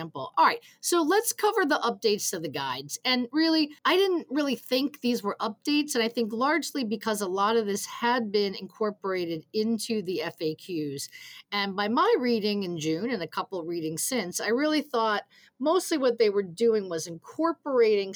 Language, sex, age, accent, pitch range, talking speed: English, female, 40-59, American, 175-245 Hz, 185 wpm